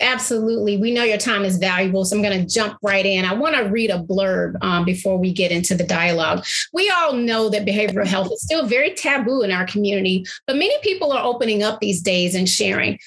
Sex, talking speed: female, 230 wpm